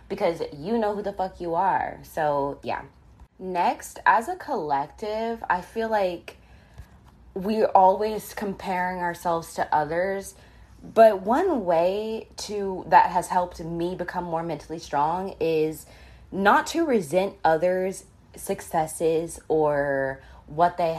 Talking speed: 125 wpm